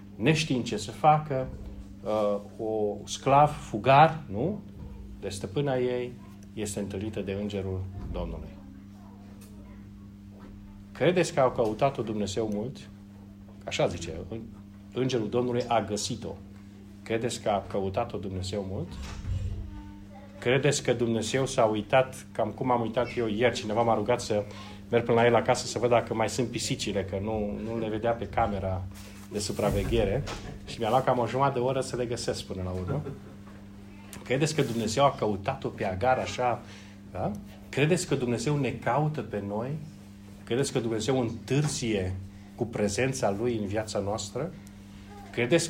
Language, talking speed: Romanian, 145 wpm